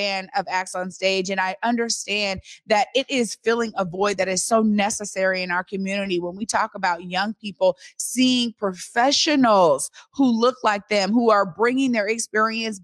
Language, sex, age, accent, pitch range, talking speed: English, female, 20-39, American, 200-250 Hz, 175 wpm